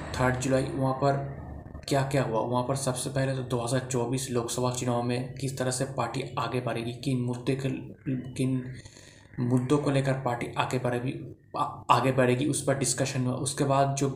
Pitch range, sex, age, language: 125-140 Hz, male, 20-39, Hindi